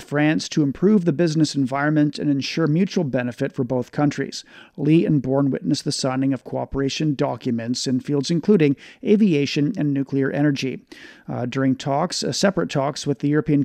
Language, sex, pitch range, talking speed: English, male, 135-165 Hz, 165 wpm